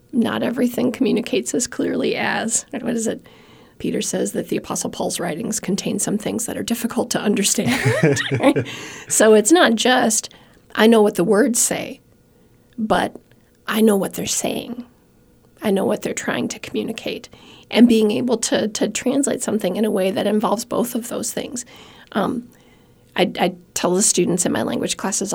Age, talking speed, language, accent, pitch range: 40-59, 175 wpm, English, American, 200-235 Hz